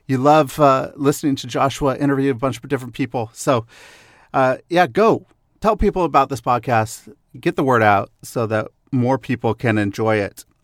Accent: American